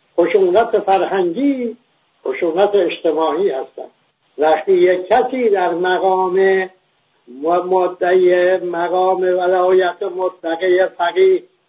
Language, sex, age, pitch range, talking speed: English, male, 60-79, 180-215 Hz, 75 wpm